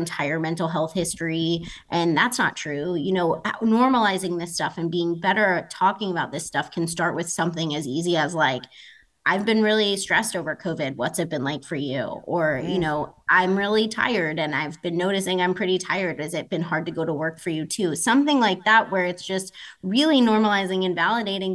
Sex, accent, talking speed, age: female, American, 210 wpm, 20-39